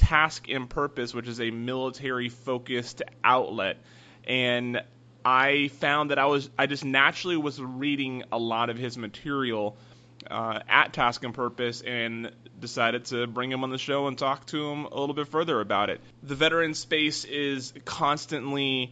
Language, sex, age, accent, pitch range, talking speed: English, male, 30-49, American, 120-140 Hz, 170 wpm